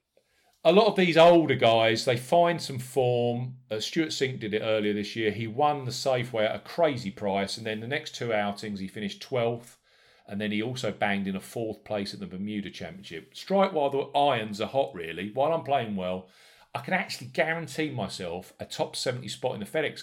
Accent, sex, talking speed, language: British, male, 215 wpm, English